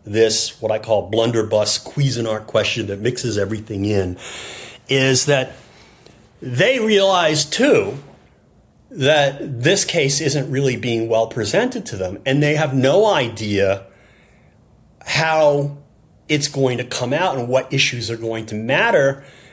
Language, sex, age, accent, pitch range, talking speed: English, male, 40-59, American, 110-155 Hz, 135 wpm